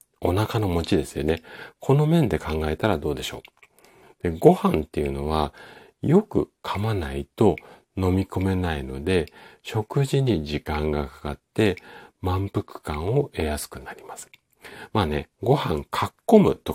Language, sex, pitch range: Japanese, male, 75-110 Hz